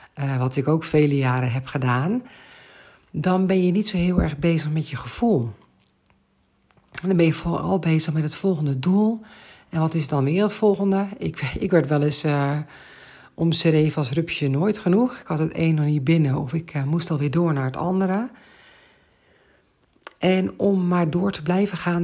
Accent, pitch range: Dutch, 145-180 Hz